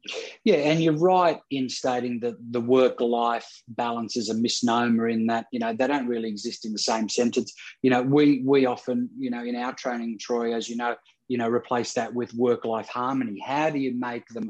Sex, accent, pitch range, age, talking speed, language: male, Australian, 120-145 Hz, 30-49, 215 wpm, English